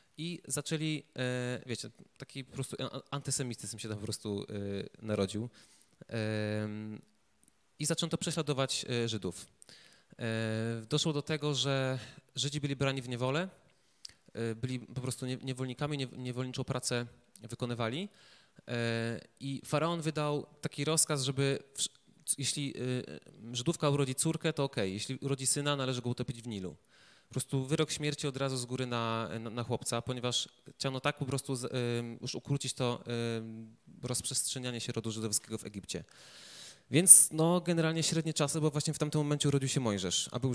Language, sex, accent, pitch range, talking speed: Polish, male, native, 115-145 Hz, 135 wpm